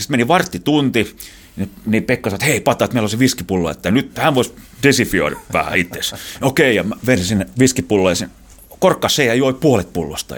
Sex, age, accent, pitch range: male, 30-49, native, 95-130 Hz